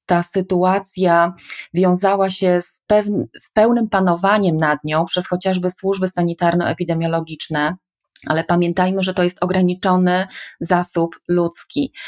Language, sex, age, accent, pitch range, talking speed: Polish, female, 20-39, native, 170-190 Hz, 105 wpm